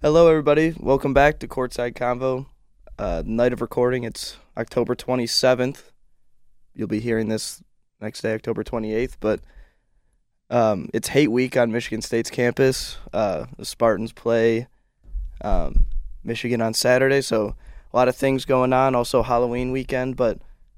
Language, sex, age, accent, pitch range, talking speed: English, male, 20-39, American, 110-130 Hz, 140 wpm